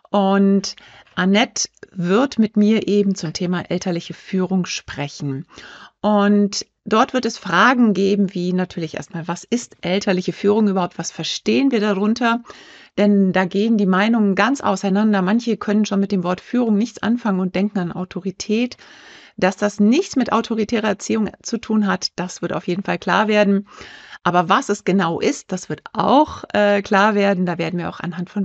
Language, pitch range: German, 185-225 Hz